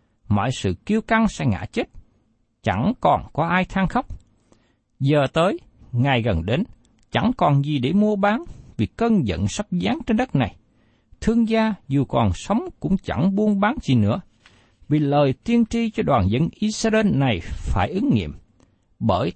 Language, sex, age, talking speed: Vietnamese, male, 60-79, 175 wpm